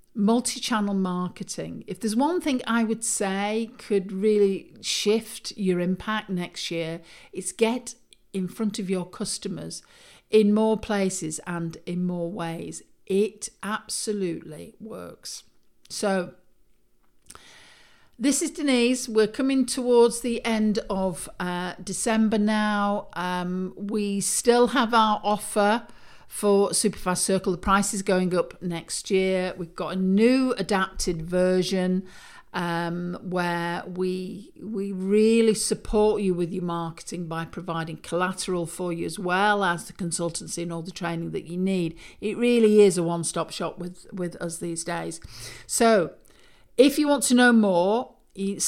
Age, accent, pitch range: 50-69, British, 180-220 Hz